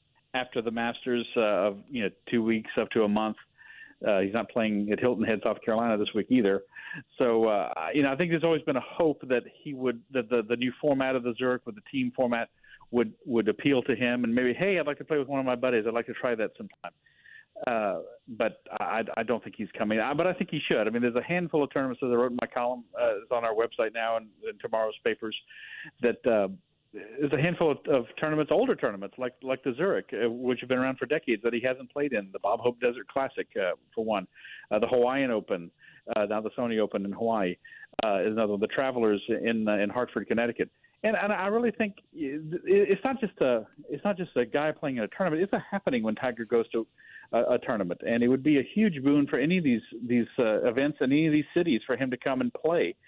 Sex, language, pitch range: male, English, 115-150 Hz